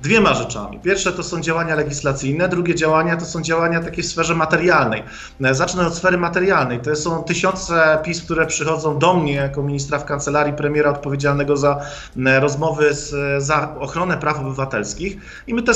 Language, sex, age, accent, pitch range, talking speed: Polish, male, 40-59, native, 145-170 Hz, 170 wpm